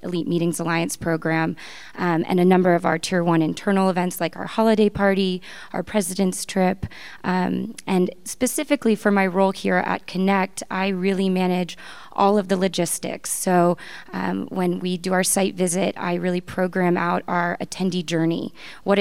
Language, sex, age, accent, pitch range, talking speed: English, female, 20-39, American, 175-195 Hz, 165 wpm